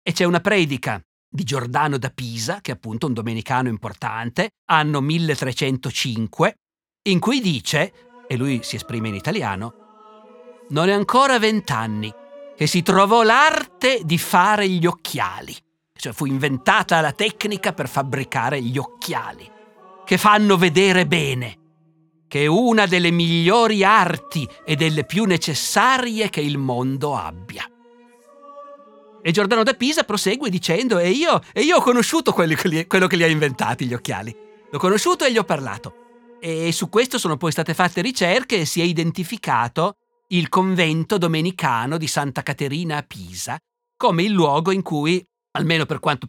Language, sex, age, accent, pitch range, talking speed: Italian, male, 50-69, native, 140-200 Hz, 155 wpm